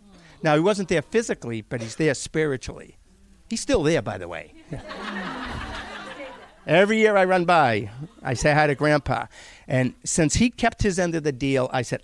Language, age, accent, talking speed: English, 50-69, American, 180 wpm